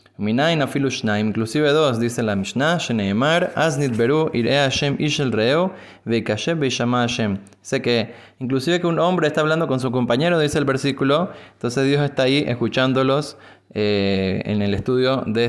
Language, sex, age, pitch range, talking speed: Spanish, male, 20-39, 115-150 Hz, 150 wpm